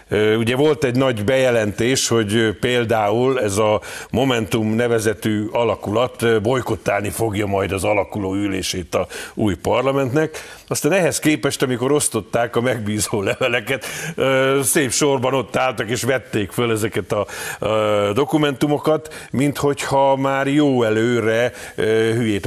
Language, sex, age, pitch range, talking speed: Hungarian, male, 50-69, 100-120 Hz, 120 wpm